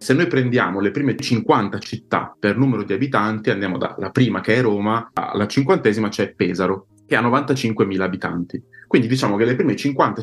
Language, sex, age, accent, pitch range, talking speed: German, male, 30-49, Italian, 95-120 Hz, 180 wpm